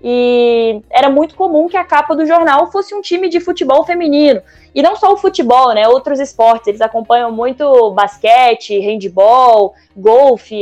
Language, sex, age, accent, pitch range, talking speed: Portuguese, female, 10-29, Brazilian, 230-295 Hz, 165 wpm